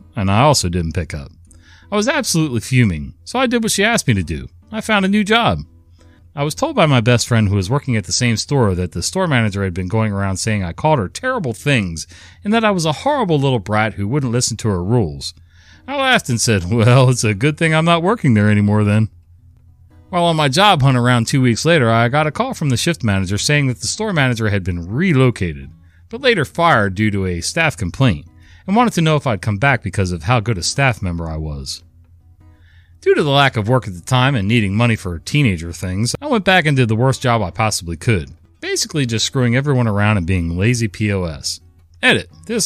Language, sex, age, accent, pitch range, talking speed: English, male, 40-59, American, 90-140 Hz, 235 wpm